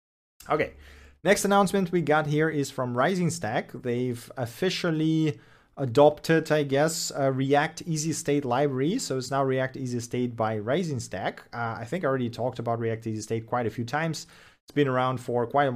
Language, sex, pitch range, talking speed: English, male, 120-145 Hz, 180 wpm